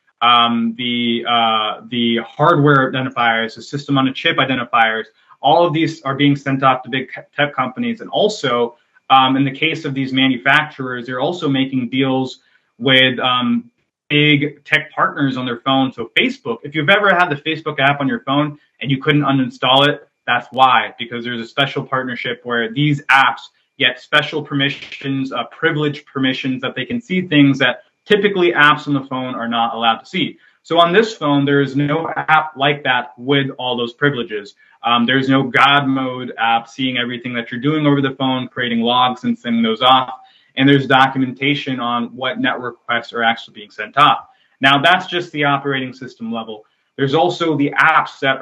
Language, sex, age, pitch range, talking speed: English, male, 20-39, 125-150 Hz, 185 wpm